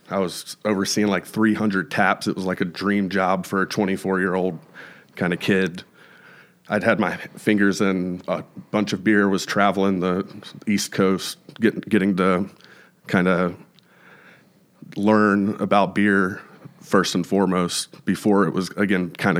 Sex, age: male, 30-49